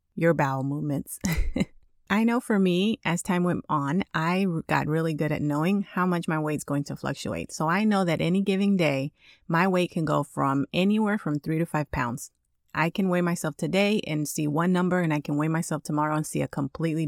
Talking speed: 215 wpm